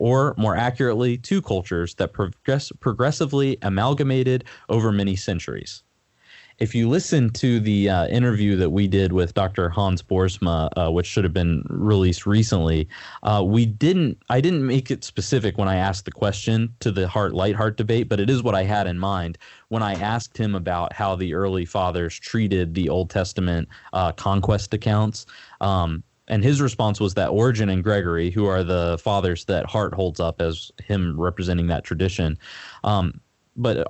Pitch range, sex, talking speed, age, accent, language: 90-115 Hz, male, 175 wpm, 20-39, American, English